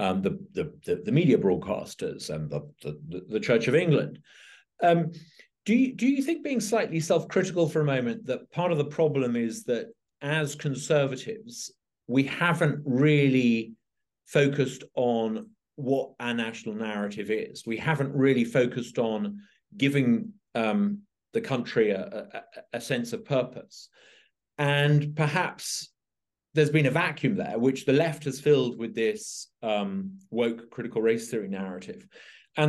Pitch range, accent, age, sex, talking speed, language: 120-170 Hz, British, 40-59, male, 145 wpm, English